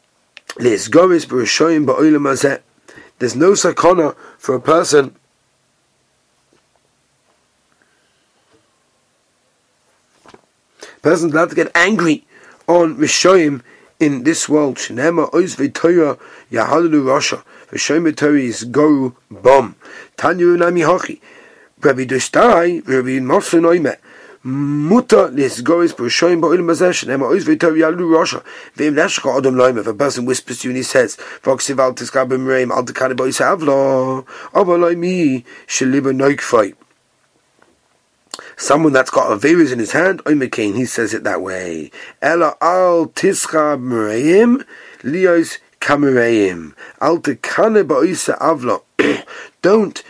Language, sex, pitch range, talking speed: English, male, 130-175 Hz, 60 wpm